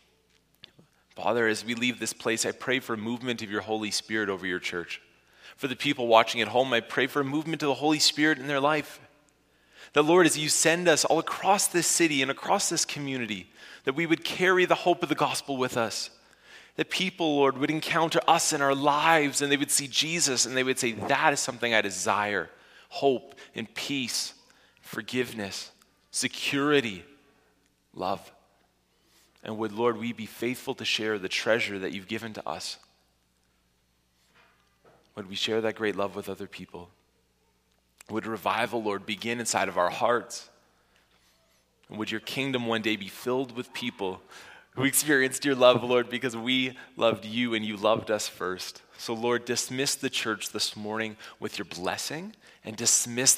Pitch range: 105-140 Hz